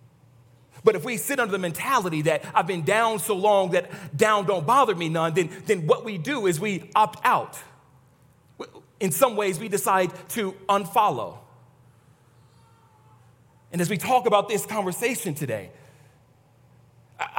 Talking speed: 150 wpm